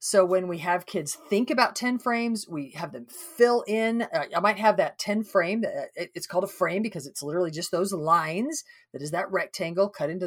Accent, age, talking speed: American, 40-59, 210 wpm